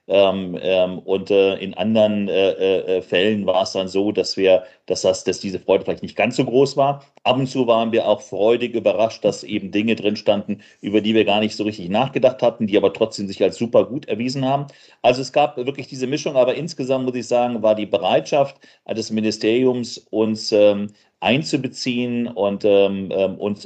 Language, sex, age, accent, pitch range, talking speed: German, male, 40-59, German, 100-120 Hz, 200 wpm